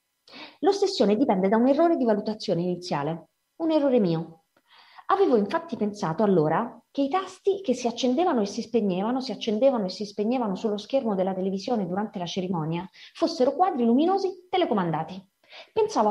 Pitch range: 200-315 Hz